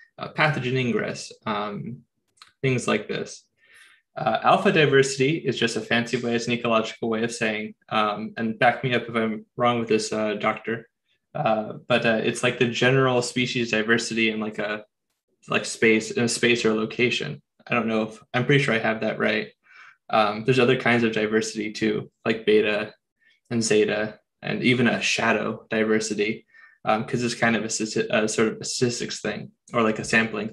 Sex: male